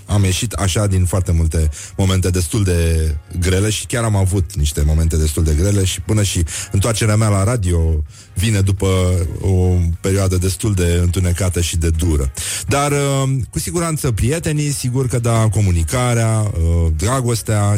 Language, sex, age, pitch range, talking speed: Romanian, male, 30-49, 90-110 Hz, 150 wpm